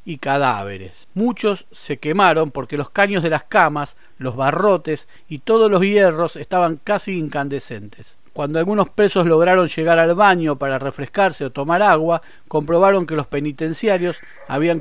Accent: Argentinian